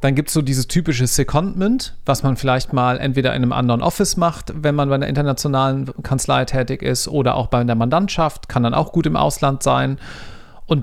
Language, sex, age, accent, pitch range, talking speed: German, male, 40-59, German, 120-160 Hz, 210 wpm